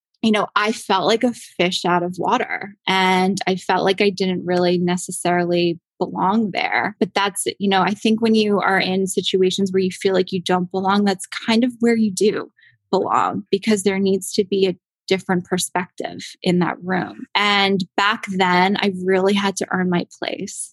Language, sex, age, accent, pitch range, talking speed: English, female, 20-39, American, 185-210 Hz, 190 wpm